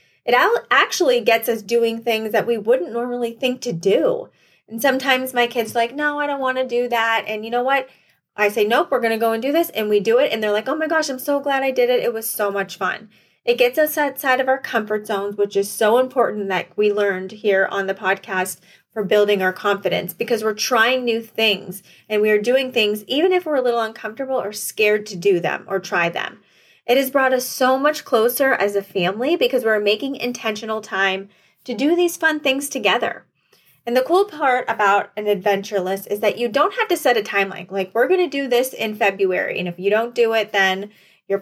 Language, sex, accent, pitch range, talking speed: English, female, American, 205-270 Hz, 235 wpm